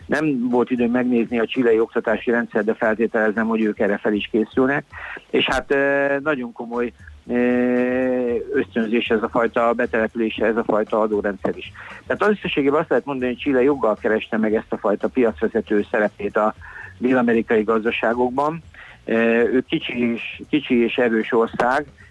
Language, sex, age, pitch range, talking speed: Hungarian, male, 50-69, 110-125 Hz, 150 wpm